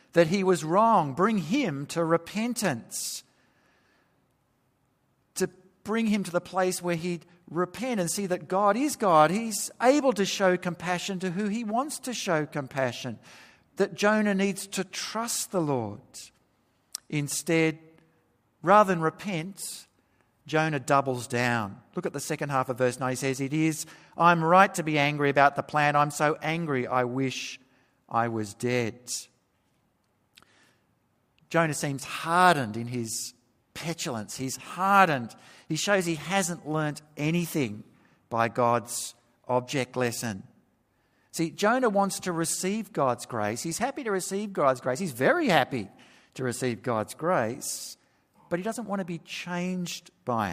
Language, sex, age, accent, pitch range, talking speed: English, male, 50-69, Australian, 125-185 Hz, 145 wpm